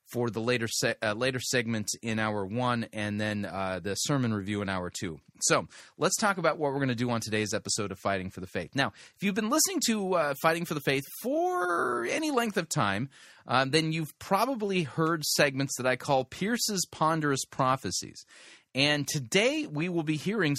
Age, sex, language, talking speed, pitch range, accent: 30-49, male, English, 205 wpm, 115-155 Hz, American